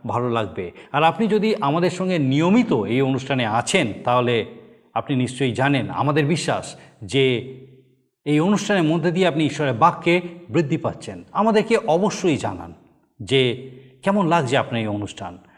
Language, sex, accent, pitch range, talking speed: Bengali, male, native, 130-185 Hz, 140 wpm